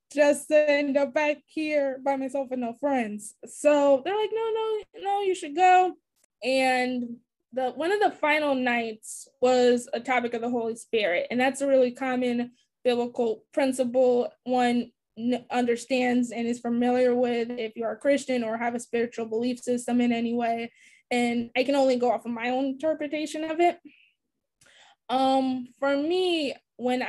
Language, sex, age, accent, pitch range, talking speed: English, female, 10-29, American, 240-285 Hz, 170 wpm